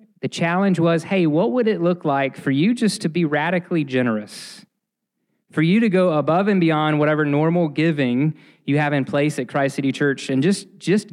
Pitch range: 140-185 Hz